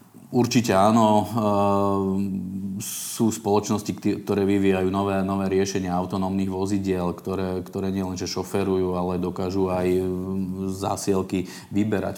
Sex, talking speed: male, 100 wpm